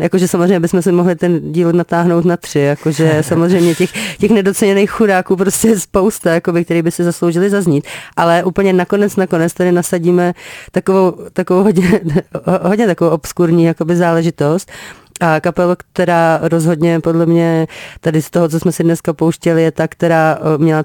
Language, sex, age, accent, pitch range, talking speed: Czech, female, 30-49, native, 155-175 Hz, 160 wpm